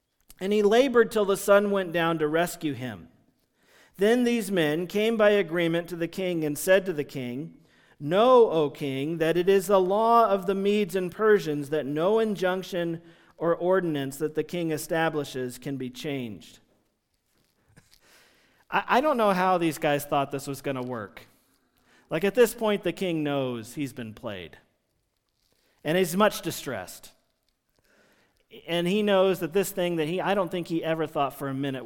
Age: 40-59